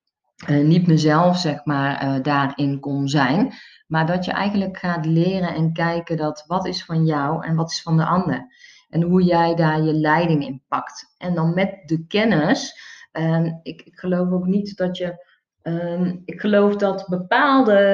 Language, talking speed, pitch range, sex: Dutch, 180 wpm, 150-180 Hz, female